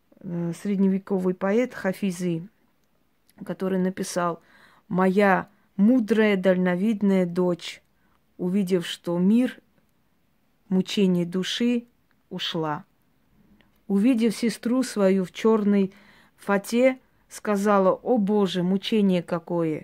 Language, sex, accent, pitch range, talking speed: Russian, female, native, 190-235 Hz, 90 wpm